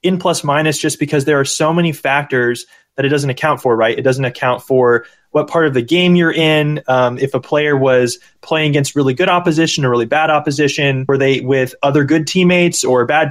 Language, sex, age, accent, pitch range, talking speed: English, male, 20-39, American, 130-160 Hz, 220 wpm